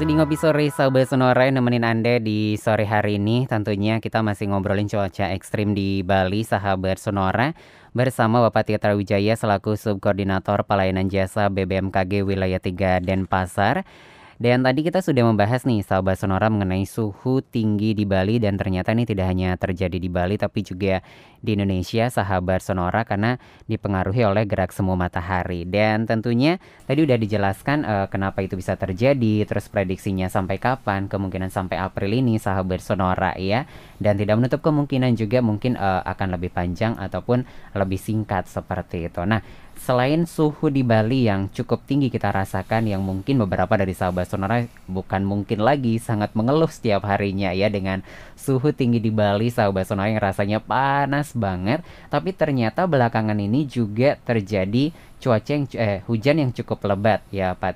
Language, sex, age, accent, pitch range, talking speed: Indonesian, female, 20-39, native, 95-125 Hz, 160 wpm